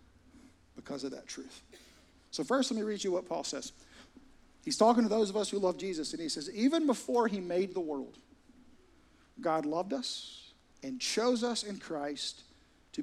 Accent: American